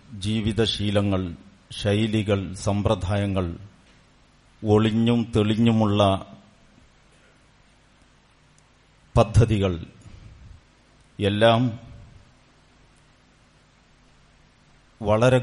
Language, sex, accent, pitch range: Malayalam, male, native, 100-115 Hz